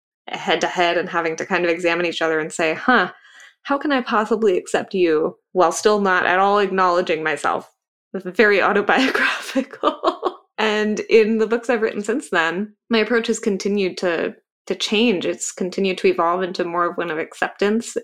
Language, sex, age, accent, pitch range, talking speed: English, female, 20-39, American, 170-210 Hz, 175 wpm